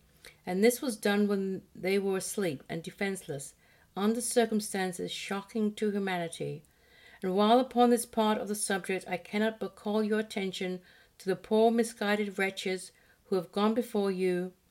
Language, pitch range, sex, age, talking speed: English, 185-220 Hz, female, 50-69, 160 wpm